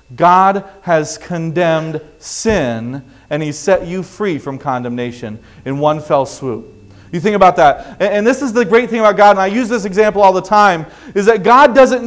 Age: 30-49